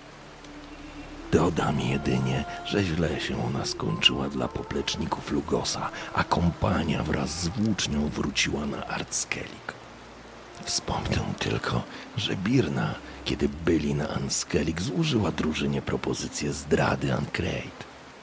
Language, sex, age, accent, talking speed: Polish, male, 50-69, native, 100 wpm